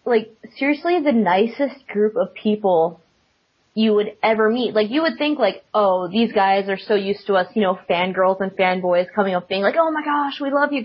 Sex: female